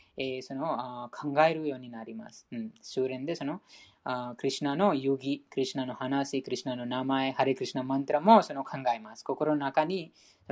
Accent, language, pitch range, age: Indian, Japanese, 130-140 Hz, 20-39